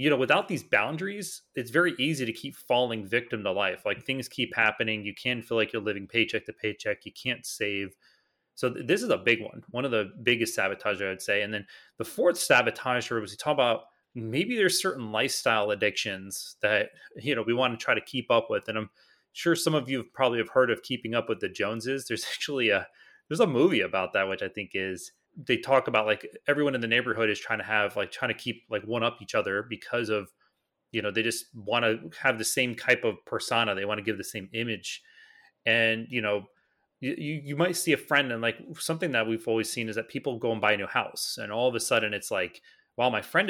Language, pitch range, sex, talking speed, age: English, 105-135 Hz, male, 240 wpm, 30-49